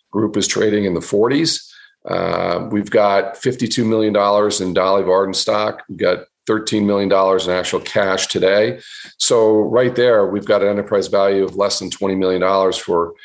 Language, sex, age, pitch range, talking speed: English, male, 40-59, 95-115 Hz, 180 wpm